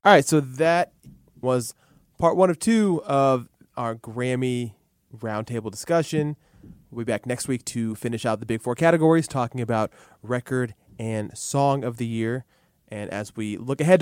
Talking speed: 165 wpm